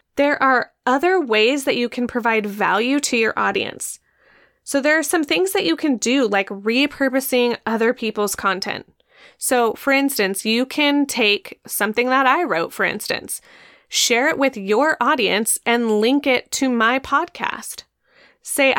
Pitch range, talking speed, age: 220-285 Hz, 160 wpm, 20-39